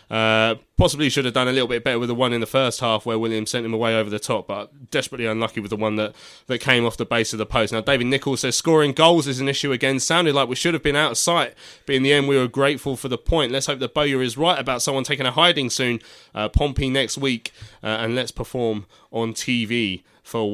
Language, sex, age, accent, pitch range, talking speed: English, male, 20-39, British, 115-145 Hz, 265 wpm